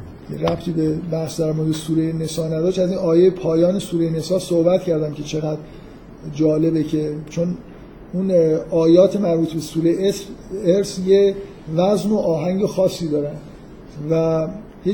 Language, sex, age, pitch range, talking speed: Persian, male, 50-69, 160-185 Hz, 140 wpm